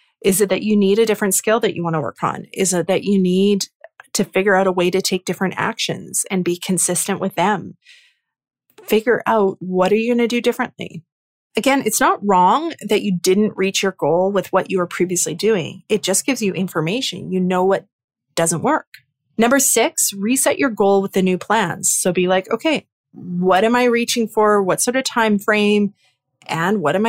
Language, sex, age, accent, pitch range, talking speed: English, female, 30-49, American, 185-235 Hz, 210 wpm